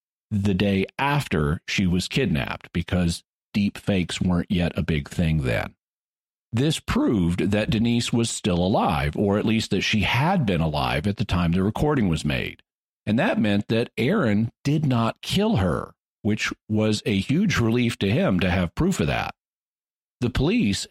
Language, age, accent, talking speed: English, 50-69, American, 170 wpm